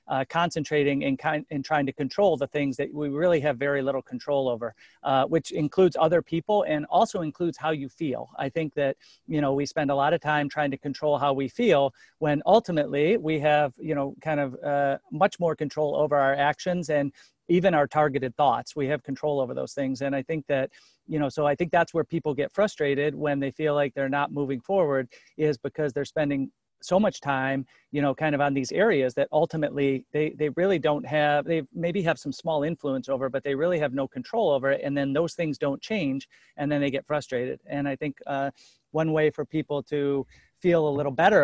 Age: 40-59